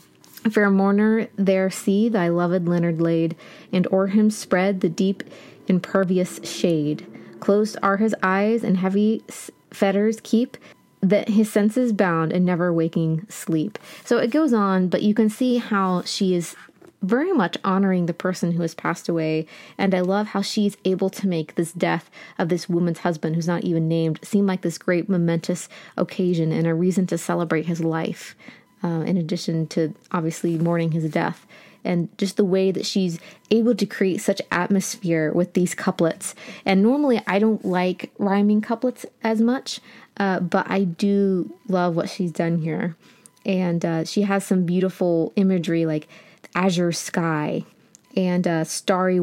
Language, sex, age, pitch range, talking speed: English, female, 20-39, 170-205 Hz, 165 wpm